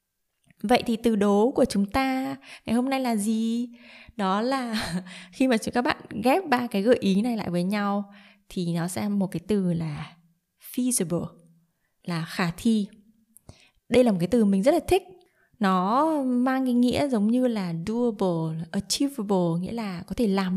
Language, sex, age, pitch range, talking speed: Vietnamese, female, 20-39, 180-240 Hz, 180 wpm